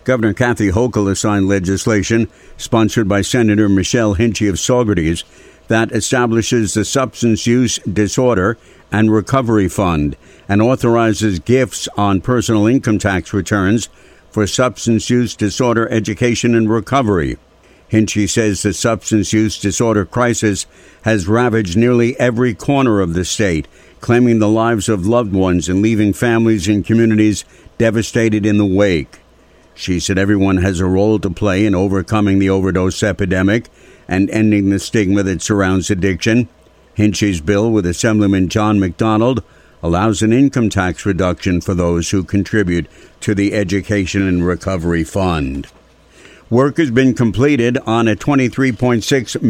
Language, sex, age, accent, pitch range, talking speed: English, male, 60-79, American, 95-115 Hz, 140 wpm